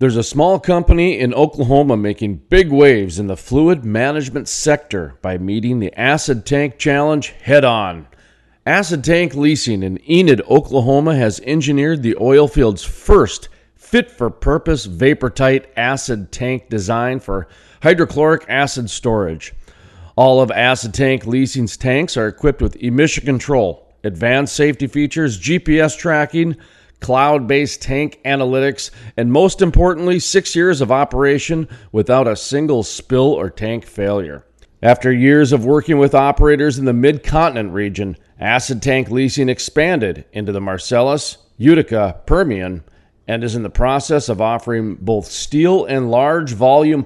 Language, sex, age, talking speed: English, male, 40-59, 135 wpm